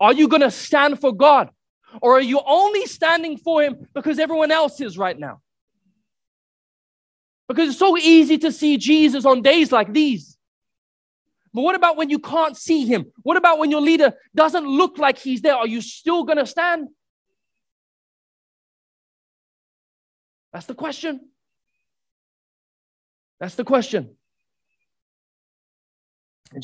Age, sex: 20-39, male